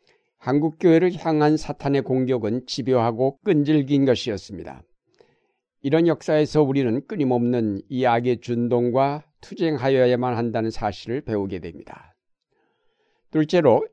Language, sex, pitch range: Korean, male, 120-145 Hz